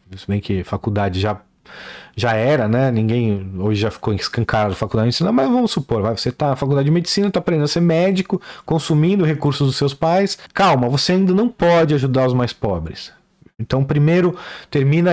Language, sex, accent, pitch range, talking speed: Portuguese, male, Brazilian, 120-165 Hz, 190 wpm